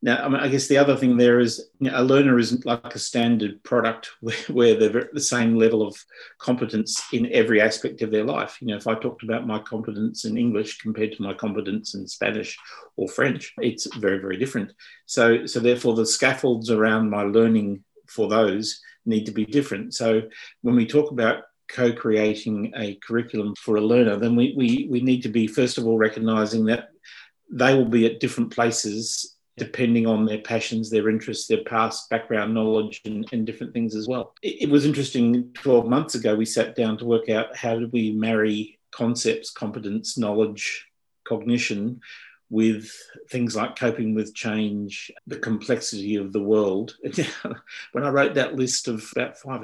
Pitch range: 110-120 Hz